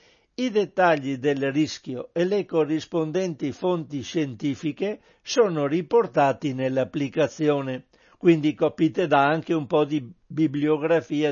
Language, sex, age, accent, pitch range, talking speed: Italian, male, 60-79, native, 145-180 Hz, 105 wpm